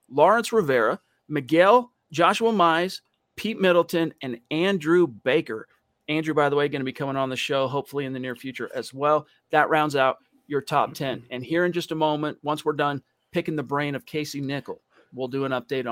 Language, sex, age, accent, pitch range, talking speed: English, male, 40-59, American, 135-165 Hz, 200 wpm